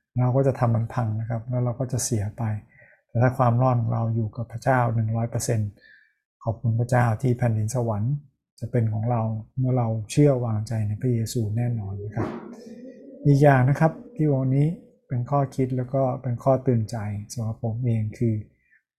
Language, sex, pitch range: Thai, male, 115-130 Hz